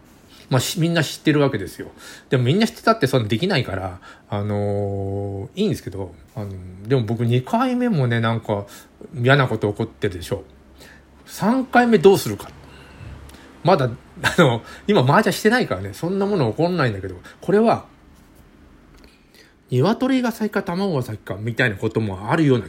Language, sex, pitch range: Japanese, male, 105-155 Hz